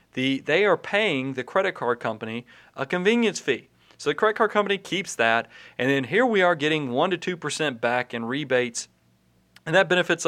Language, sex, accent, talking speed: English, male, American, 185 wpm